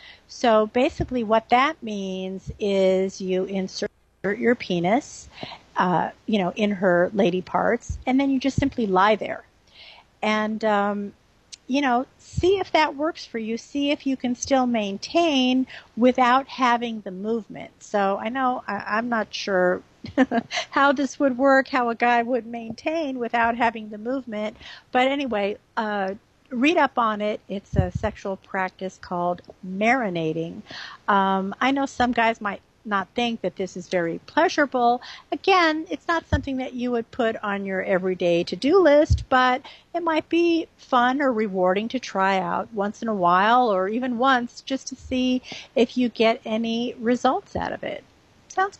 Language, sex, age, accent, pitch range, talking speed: English, female, 50-69, American, 205-270 Hz, 160 wpm